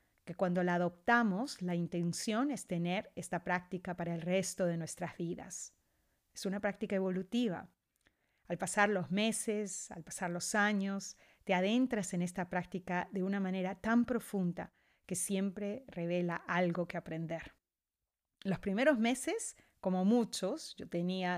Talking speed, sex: 145 wpm, female